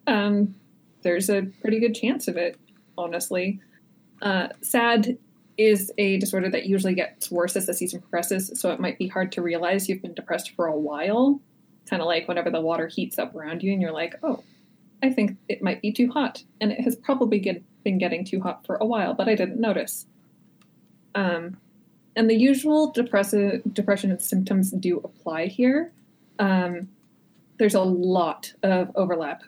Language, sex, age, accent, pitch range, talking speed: English, female, 20-39, American, 180-225 Hz, 175 wpm